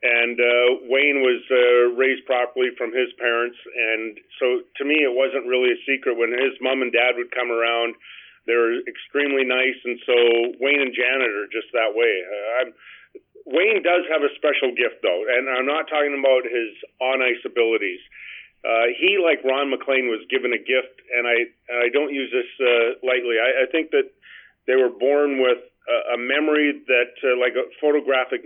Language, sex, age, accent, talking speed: English, male, 40-59, American, 190 wpm